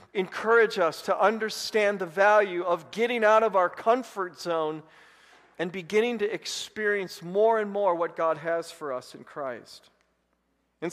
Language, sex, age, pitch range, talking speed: English, male, 40-59, 165-205 Hz, 155 wpm